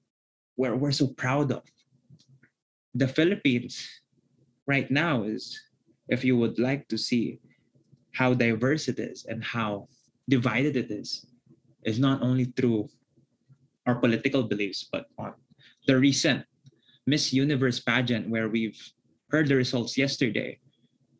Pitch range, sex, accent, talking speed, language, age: 115-135 Hz, male, Filipino, 125 wpm, English, 20-39